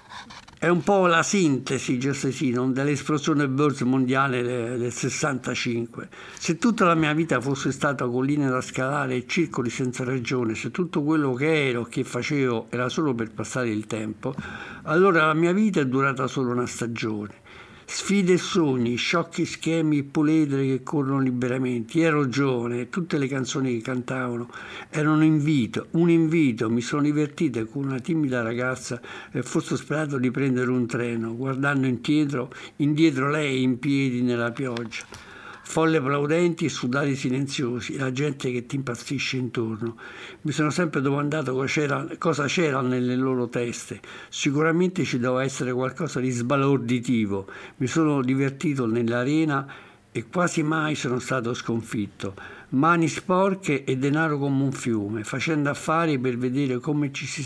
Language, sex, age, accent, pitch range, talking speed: Italian, male, 60-79, native, 125-150 Hz, 150 wpm